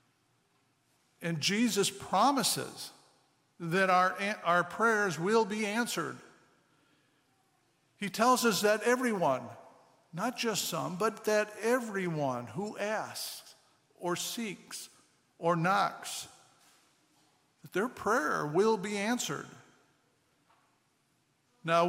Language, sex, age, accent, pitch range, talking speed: English, male, 50-69, American, 165-205 Hz, 95 wpm